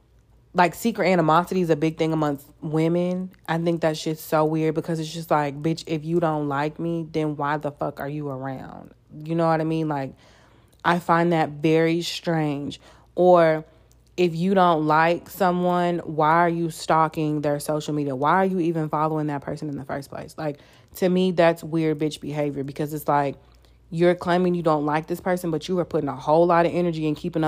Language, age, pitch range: English, 30-49, 150-170 Hz